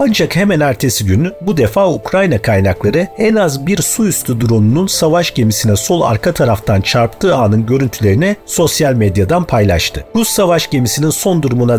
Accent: native